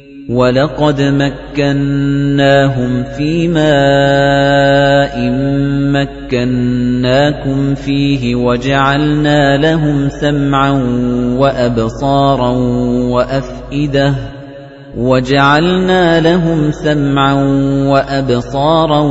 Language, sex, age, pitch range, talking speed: Arabic, male, 30-49, 135-150 Hz, 45 wpm